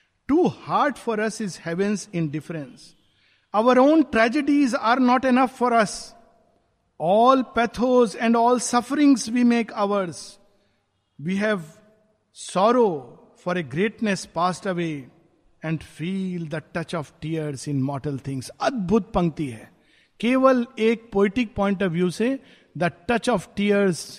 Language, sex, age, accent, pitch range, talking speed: Hindi, male, 50-69, native, 155-230 Hz, 135 wpm